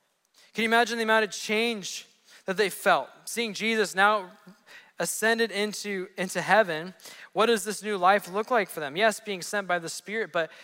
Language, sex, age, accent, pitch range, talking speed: English, male, 20-39, American, 165-215 Hz, 185 wpm